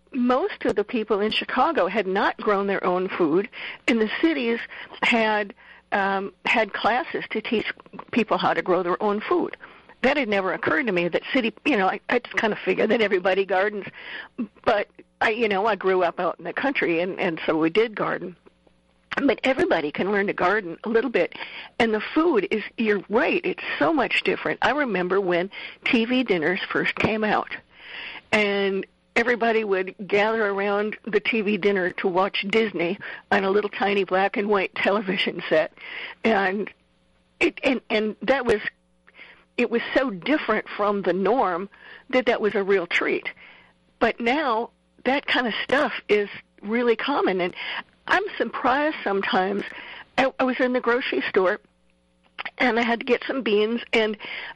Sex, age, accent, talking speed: female, 50-69, American, 175 wpm